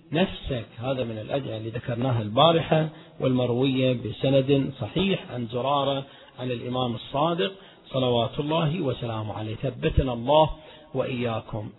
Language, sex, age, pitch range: Arabic, male, 40-59, 125-160 Hz